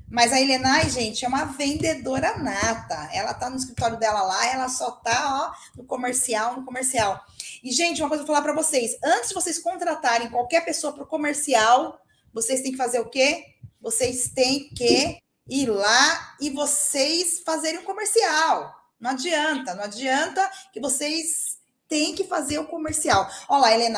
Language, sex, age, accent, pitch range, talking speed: Portuguese, female, 20-39, Brazilian, 245-305 Hz, 180 wpm